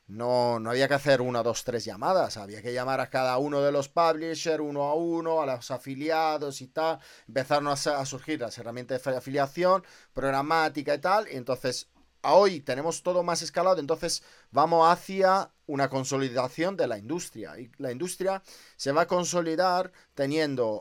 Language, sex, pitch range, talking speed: Spanish, male, 125-165 Hz, 175 wpm